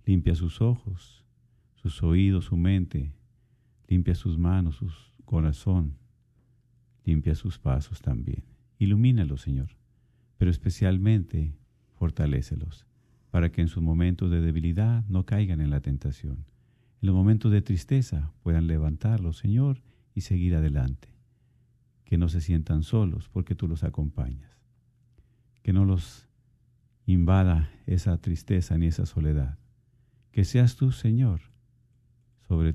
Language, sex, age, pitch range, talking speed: Spanish, male, 50-69, 85-120 Hz, 125 wpm